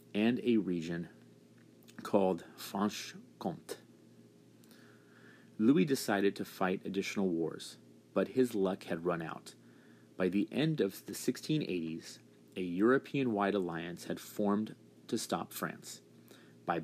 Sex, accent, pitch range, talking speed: male, American, 80-110 Hz, 115 wpm